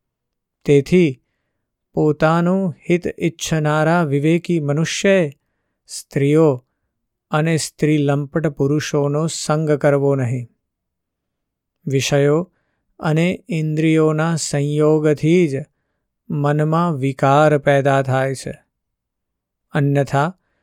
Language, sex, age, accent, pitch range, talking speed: Gujarati, male, 50-69, native, 140-165 Hz, 50 wpm